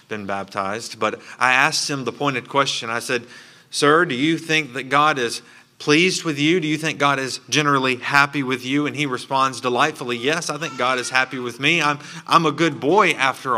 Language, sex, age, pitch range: English, male, 30-49, 125-155 Hz